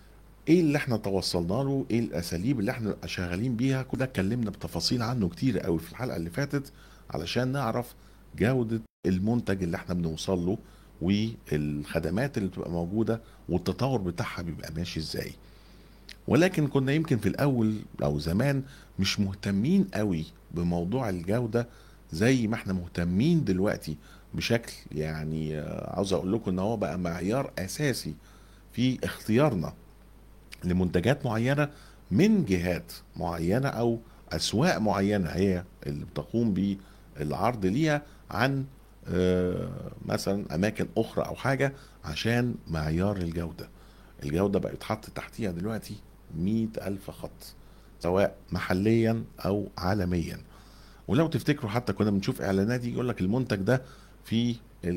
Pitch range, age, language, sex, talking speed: 90-120 Hz, 50-69, Arabic, male, 120 wpm